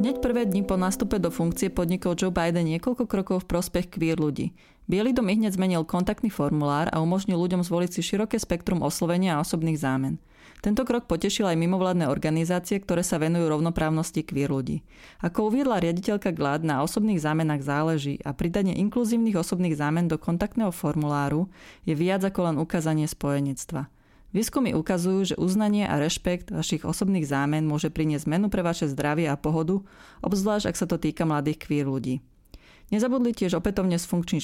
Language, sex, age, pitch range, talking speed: Slovak, female, 30-49, 155-195 Hz, 165 wpm